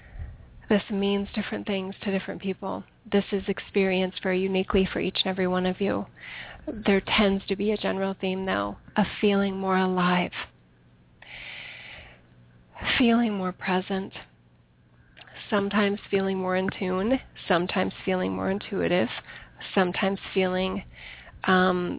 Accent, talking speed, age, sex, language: American, 125 wpm, 30-49, female, English